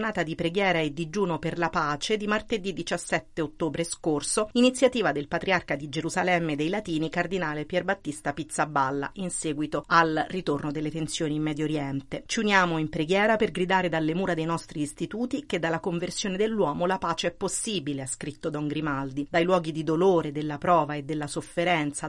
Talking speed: 175 wpm